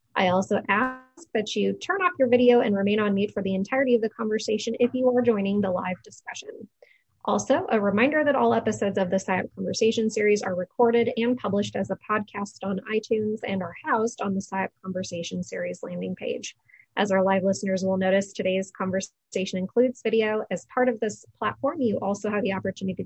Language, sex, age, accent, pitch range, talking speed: English, female, 20-39, American, 190-230 Hz, 200 wpm